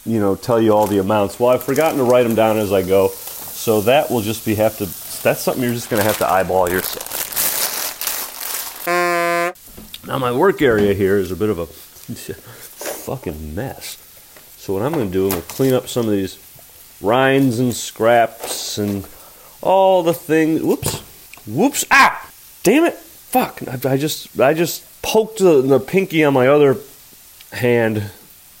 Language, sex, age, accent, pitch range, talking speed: English, male, 30-49, American, 105-150 Hz, 170 wpm